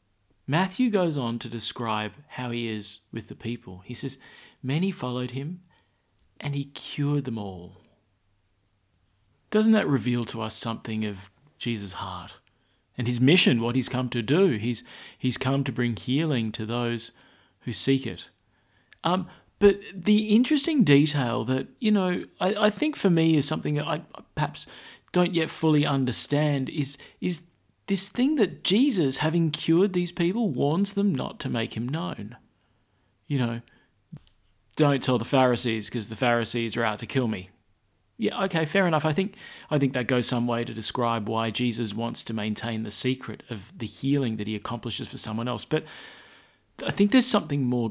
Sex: male